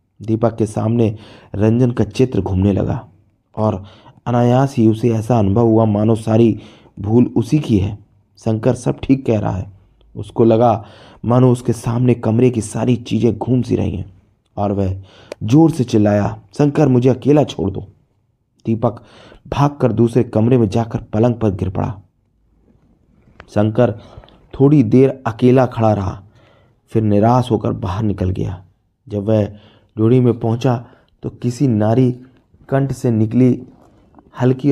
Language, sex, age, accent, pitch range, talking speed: Hindi, male, 30-49, native, 105-125 Hz, 145 wpm